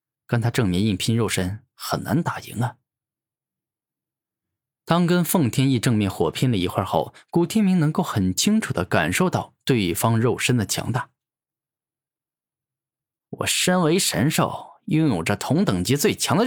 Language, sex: Chinese, male